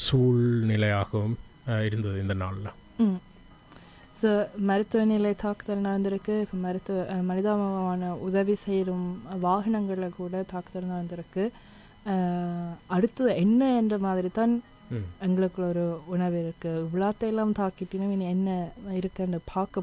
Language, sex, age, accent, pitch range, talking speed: Tamil, female, 20-39, native, 175-205 Hz, 90 wpm